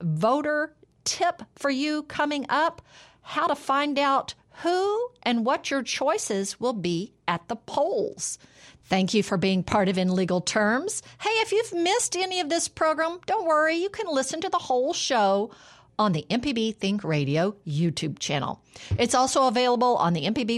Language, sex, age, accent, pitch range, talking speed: English, female, 50-69, American, 175-280 Hz, 170 wpm